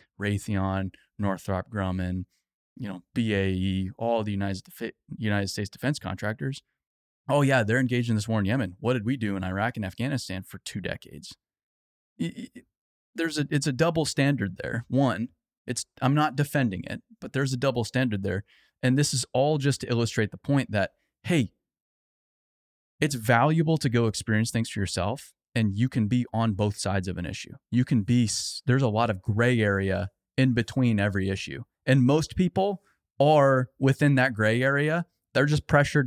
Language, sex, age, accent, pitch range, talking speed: English, male, 20-39, American, 105-150 Hz, 180 wpm